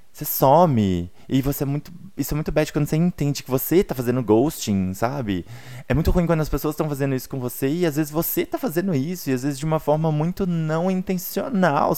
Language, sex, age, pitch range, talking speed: Portuguese, male, 20-39, 110-155 Hz, 230 wpm